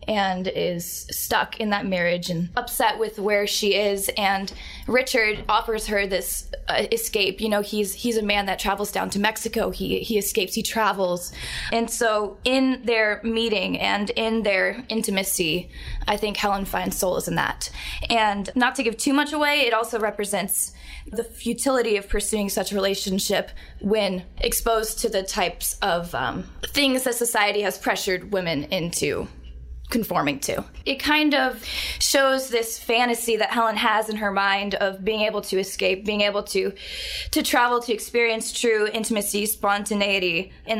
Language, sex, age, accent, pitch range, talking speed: English, female, 10-29, American, 195-230 Hz, 165 wpm